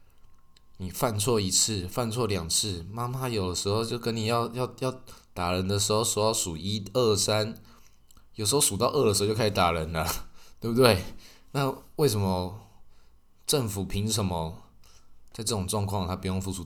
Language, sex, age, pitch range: Chinese, male, 20-39, 90-110 Hz